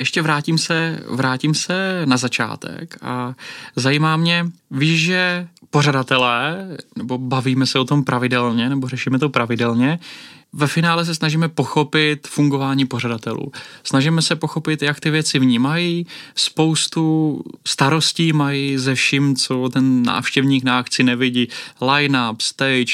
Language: Czech